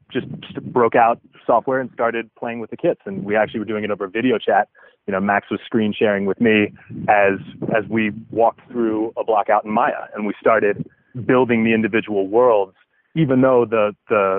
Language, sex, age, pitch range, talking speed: English, male, 30-49, 105-130 Hz, 200 wpm